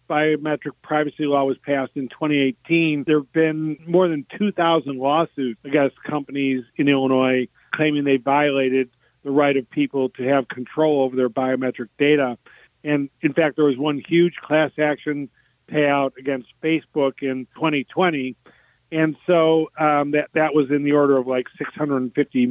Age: 40-59